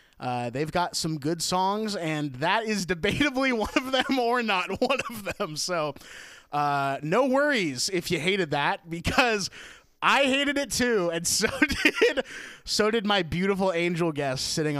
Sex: male